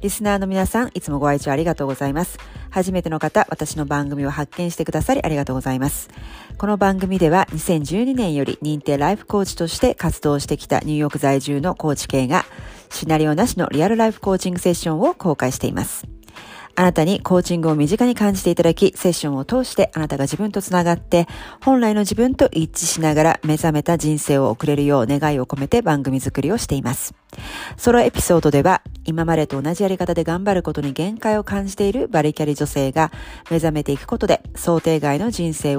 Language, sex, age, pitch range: Japanese, female, 40-59, 145-190 Hz